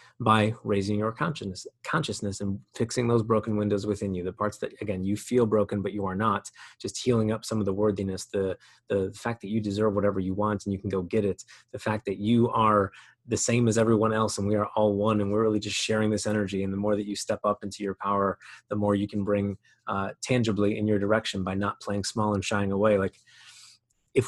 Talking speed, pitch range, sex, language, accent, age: 235 wpm, 100-115 Hz, male, English, American, 30-49